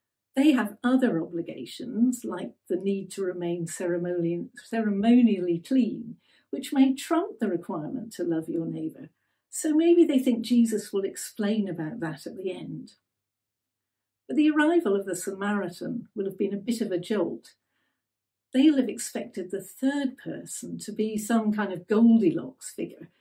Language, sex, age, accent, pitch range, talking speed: English, female, 50-69, British, 180-250 Hz, 155 wpm